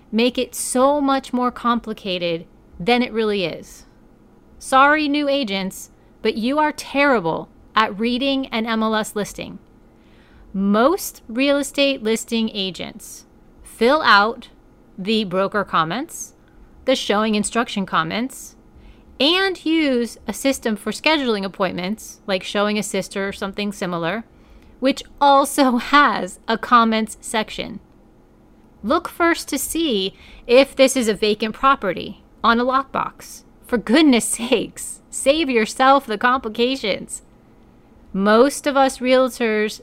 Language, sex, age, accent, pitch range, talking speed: English, female, 30-49, American, 205-265 Hz, 120 wpm